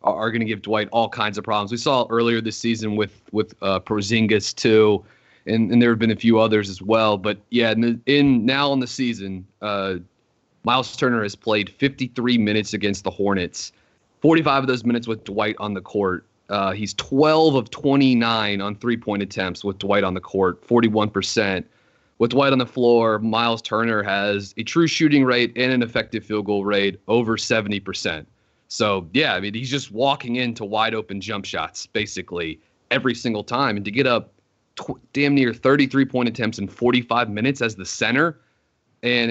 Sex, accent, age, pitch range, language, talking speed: male, American, 30-49, 100-120 Hz, English, 190 wpm